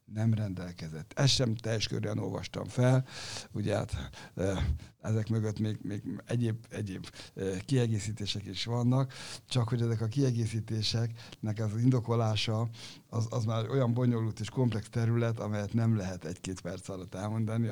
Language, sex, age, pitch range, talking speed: Hungarian, male, 60-79, 105-135 Hz, 130 wpm